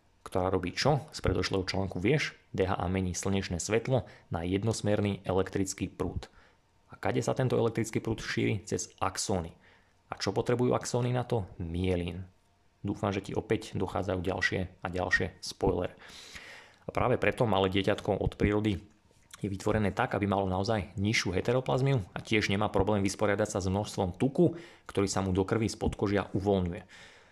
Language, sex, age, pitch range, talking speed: Slovak, male, 30-49, 95-110 Hz, 160 wpm